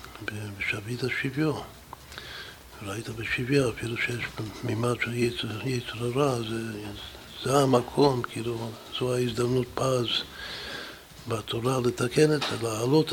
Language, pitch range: Hebrew, 105-125 Hz